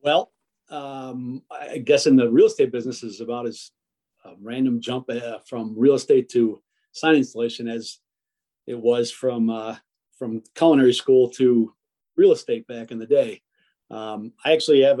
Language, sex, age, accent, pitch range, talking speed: English, male, 40-59, American, 115-140 Hz, 160 wpm